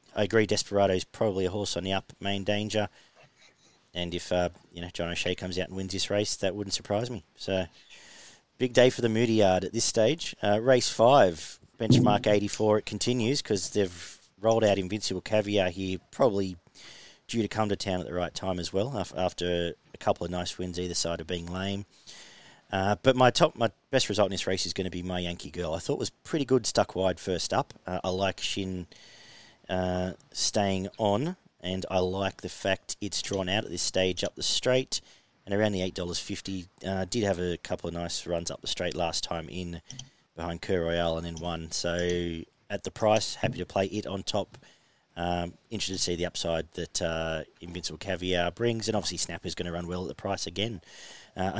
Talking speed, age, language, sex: 210 wpm, 40-59, English, male